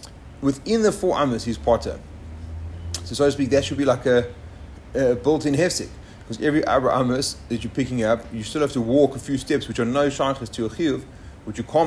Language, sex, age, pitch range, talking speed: English, male, 30-49, 105-135 Hz, 225 wpm